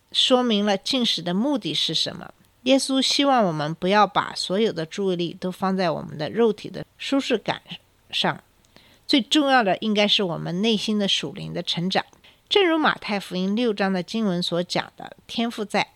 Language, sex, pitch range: Chinese, female, 180-235 Hz